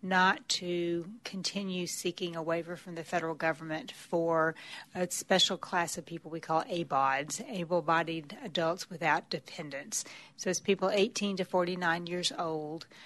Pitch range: 165-190 Hz